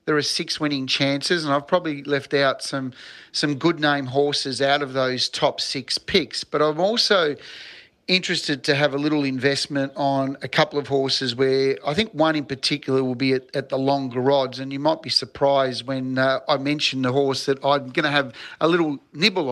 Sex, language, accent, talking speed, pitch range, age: male, English, Australian, 205 wpm, 135-155 Hz, 40-59